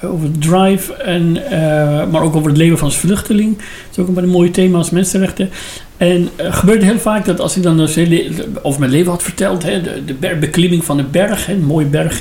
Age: 60-79